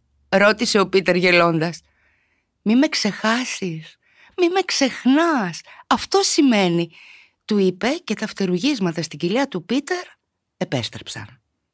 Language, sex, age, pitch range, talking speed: Greek, female, 30-49, 160-230 Hz, 120 wpm